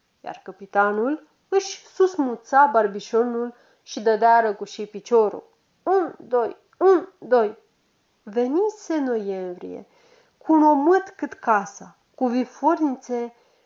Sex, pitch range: female, 210-315 Hz